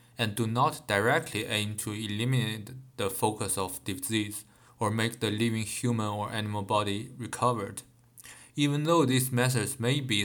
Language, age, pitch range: Chinese, 20-39, 105-125 Hz